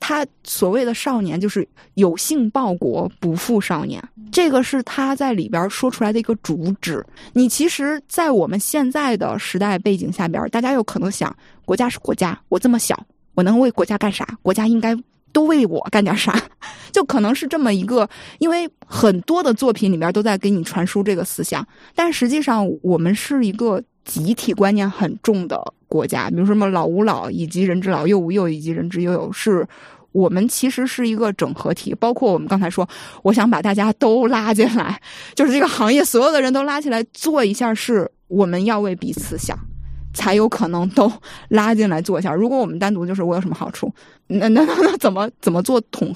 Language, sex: Chinese, female